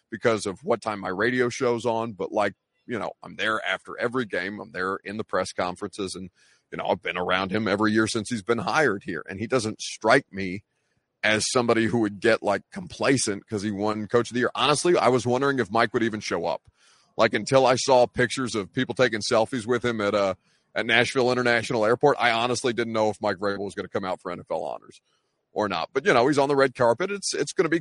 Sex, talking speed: male, 245 wpm